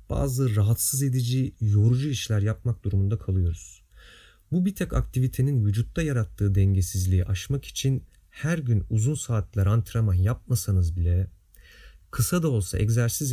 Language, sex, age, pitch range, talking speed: Turkish, male, 40-59, 95-130 Hz, 125 wpm